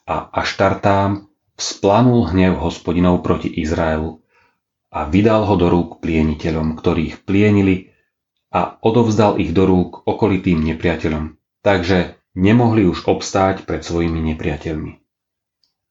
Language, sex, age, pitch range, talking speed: Slovak, male, 30-49, 85-105 Hz, 115 wpm